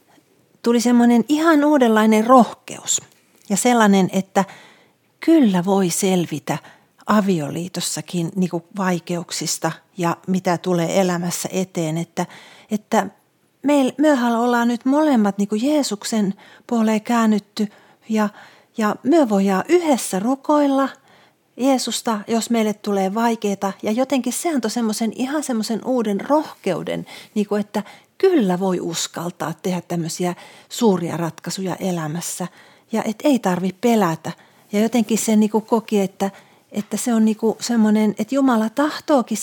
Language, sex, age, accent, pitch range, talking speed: Finnish, female, 40-59, native, 185-235 Hz, 120 wpm